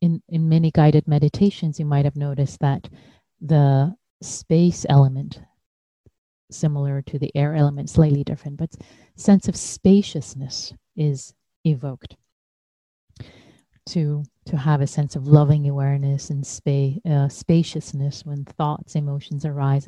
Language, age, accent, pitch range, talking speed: English, 30-49, American, 140-160 Hz, 125 wpm